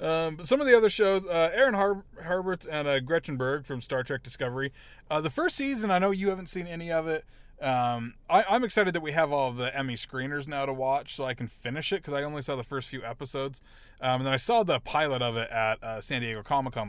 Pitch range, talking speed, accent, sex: 120-150 Hz, 250 wpm, American, male